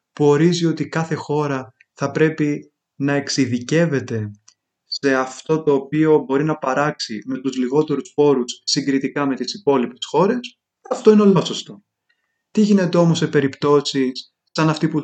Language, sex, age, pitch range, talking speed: Greek, male, 20-39, 135-185 Hz, 145 wpm